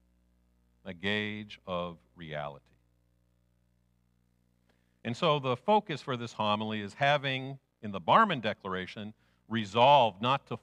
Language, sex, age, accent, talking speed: English, male, 50-69, American, 115 wpm